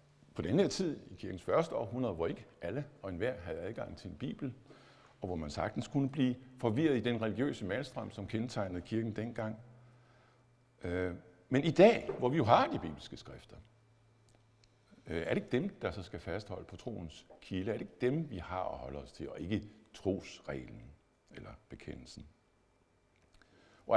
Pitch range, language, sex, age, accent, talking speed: 85-120 Hz, Danish, male, 60-79, native, 180 wpm